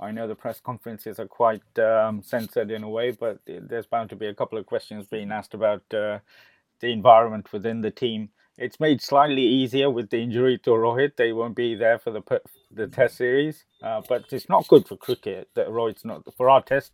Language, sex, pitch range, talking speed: English, male, 110-140 Hz, 220 wpm